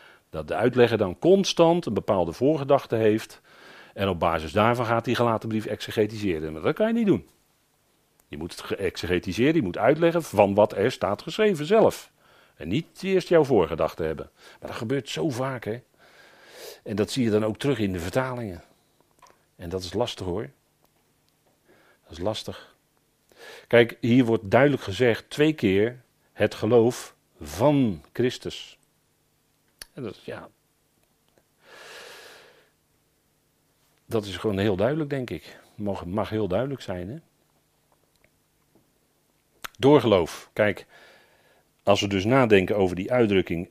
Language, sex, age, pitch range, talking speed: Dutch, male, 40-59, 100-135 Hz, 135 wpm